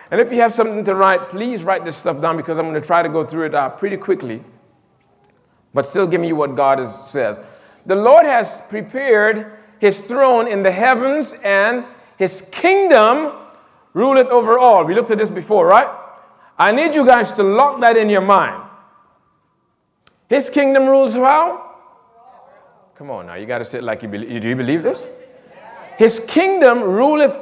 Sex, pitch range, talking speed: male, 190-265 Hz, 180 wpm